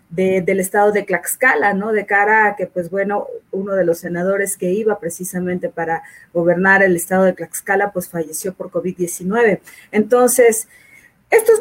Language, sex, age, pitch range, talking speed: Spanish, female, 30-49, 190-250 Hz, 155 wpm